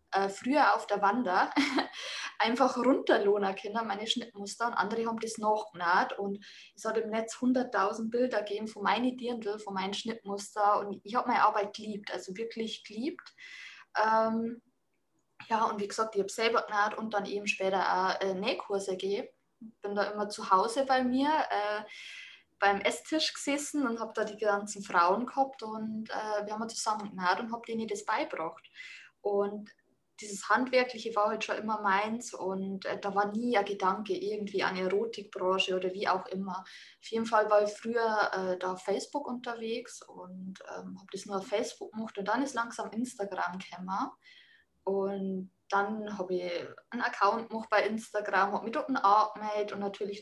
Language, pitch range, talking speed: German, 200-230 Hz, 175 wpm